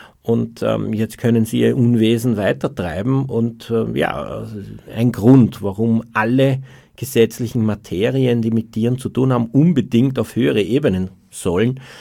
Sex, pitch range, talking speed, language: male, 105-130 Hz, 140 wpm, German